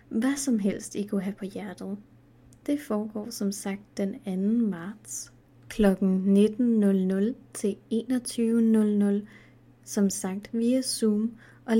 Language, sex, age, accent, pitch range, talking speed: Danish, female, 30-49, native, 200-245 Hz, 120 wpm